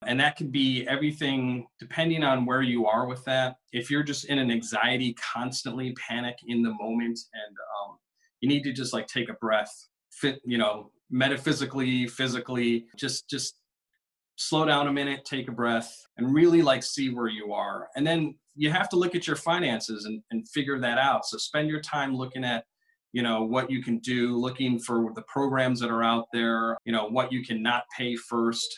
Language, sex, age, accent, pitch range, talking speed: English, male, 30-49, American, 120-145 Hz, 200 wpm